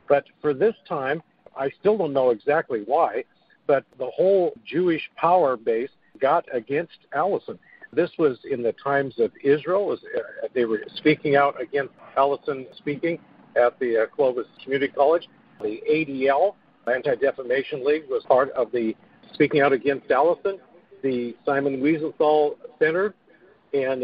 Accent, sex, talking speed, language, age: American, male, 140 wpm, English, 50-69